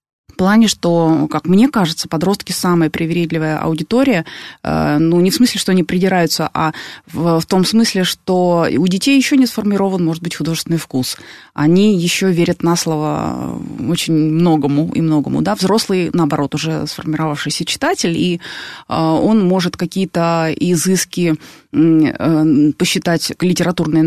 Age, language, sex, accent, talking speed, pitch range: 20-39, Russian, female, native, 135 wpm, 160-205 Hz